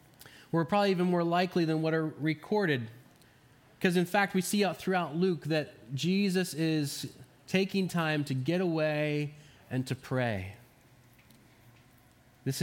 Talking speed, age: 140 wpm, 20-39